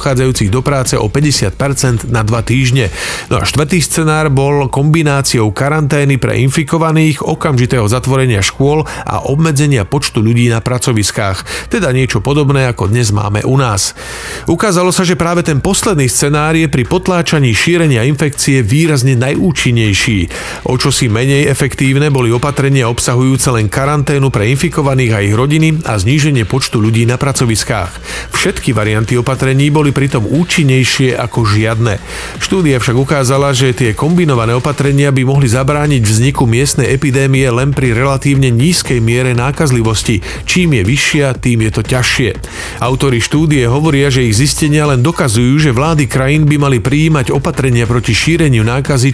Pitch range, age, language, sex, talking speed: 120-145 Hz, 40-59, Slovak, male, 145 wpm